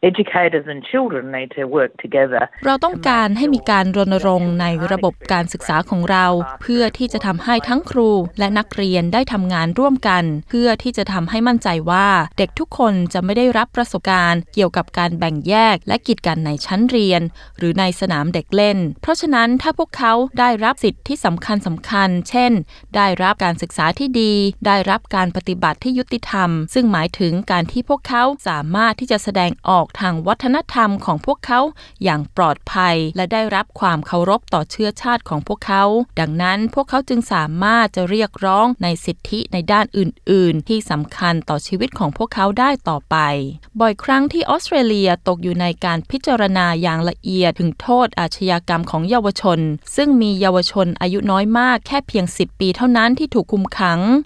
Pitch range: 175-235 Hz